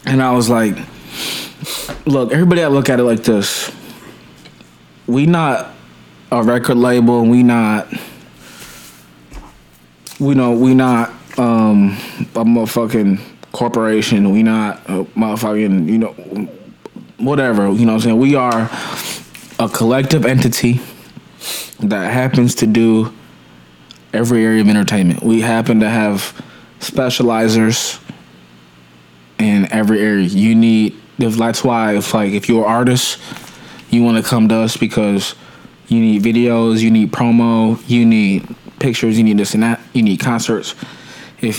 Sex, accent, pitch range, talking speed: male, American, 105-120 Hz, 135 wpm